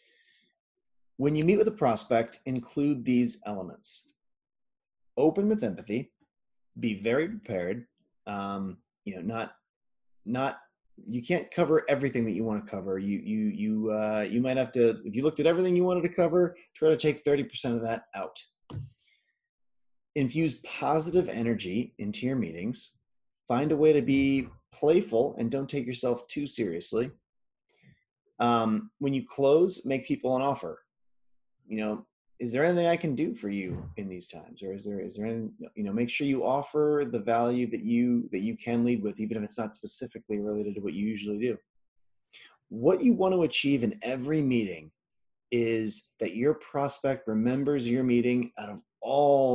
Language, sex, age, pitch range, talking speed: English, male, 30-49, 110-150 Hz, 170 wpm